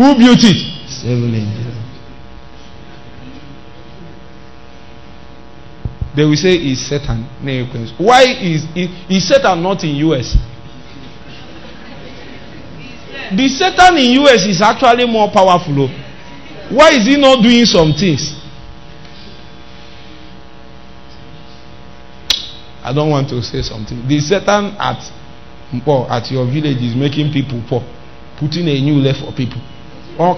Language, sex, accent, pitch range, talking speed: English, male, Nigerian, 115-170 Hz, 100 wpm